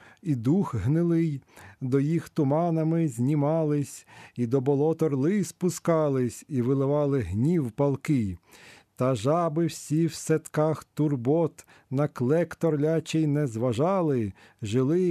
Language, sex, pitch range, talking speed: Ukrainian, male, 125-165 Hz, 105 wpm